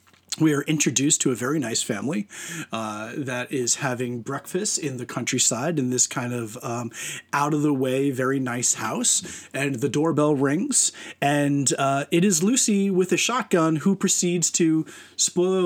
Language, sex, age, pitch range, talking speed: English, male, 30-49, 130-170 Hz, 160 wpm